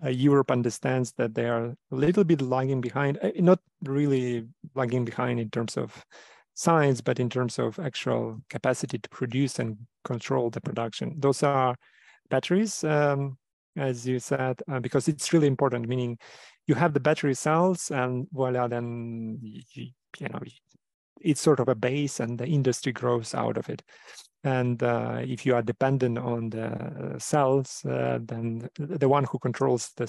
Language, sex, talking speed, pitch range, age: Ukrainian, male, 160 wpm, 120-140 Hz, 40-59